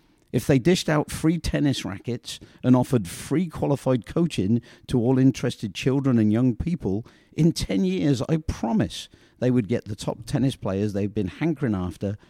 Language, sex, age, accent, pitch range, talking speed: English, male, 50-69, British, 100-130 Hz, 170 wpm